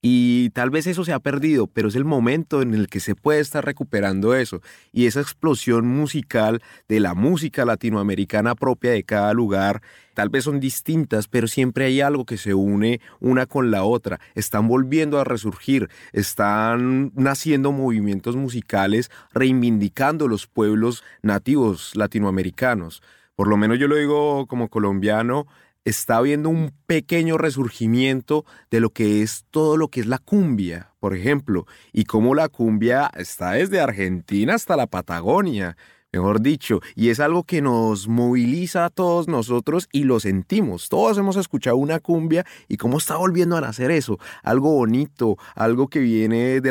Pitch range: 110-145 Hz